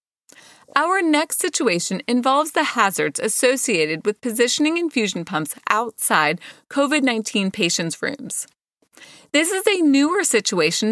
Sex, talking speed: female, 110 wpm